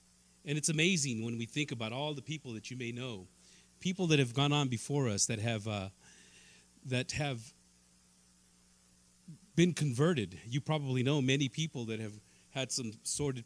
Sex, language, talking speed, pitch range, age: male, English, 170 wpm, 110-140 Hz, 40-59